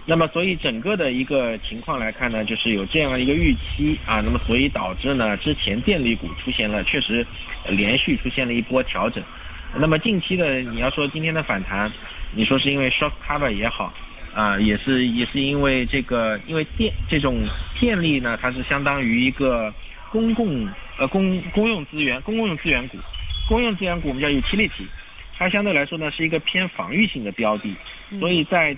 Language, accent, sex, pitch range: Chinese, native, male, 115-170 Hz